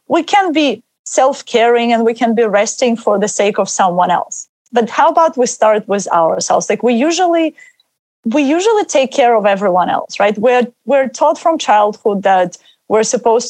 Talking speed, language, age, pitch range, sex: 180 wpm, English, 30-49, 210-275 Hz, female